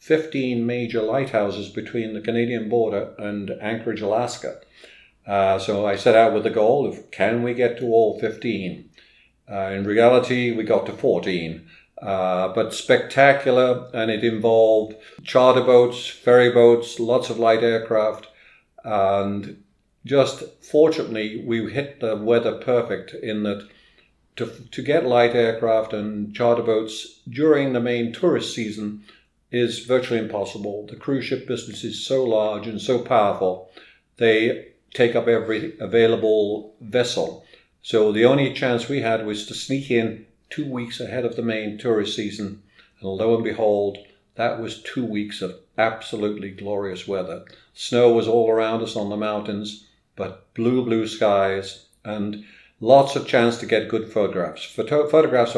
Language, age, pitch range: English, 50-69, 105-120 Hz